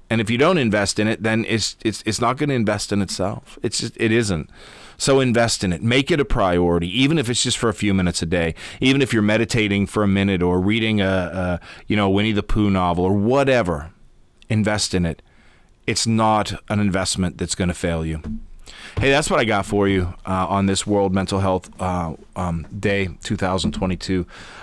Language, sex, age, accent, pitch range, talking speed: English, male, 30-49, American, 90-115 Hz, 210 wpm